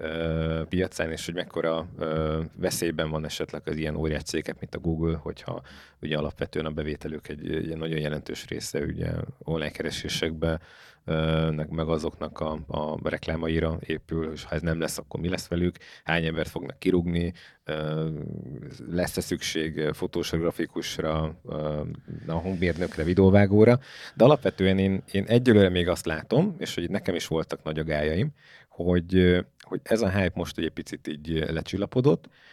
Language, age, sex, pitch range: Hungarian, 30-49, male, 80-90 Hz